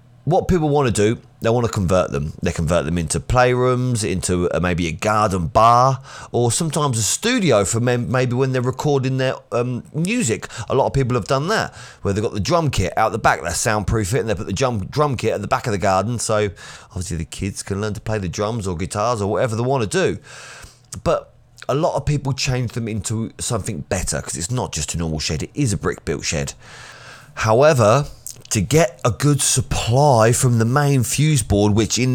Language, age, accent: English, 30-49, British